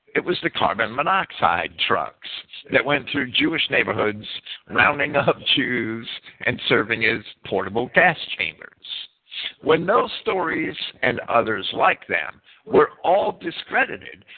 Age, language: 60-79, English